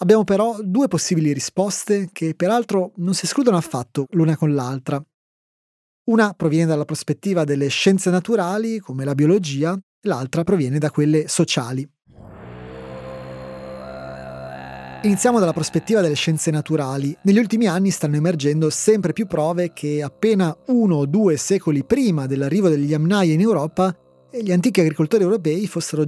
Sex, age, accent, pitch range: male, 30-49, native, 145-190 Hz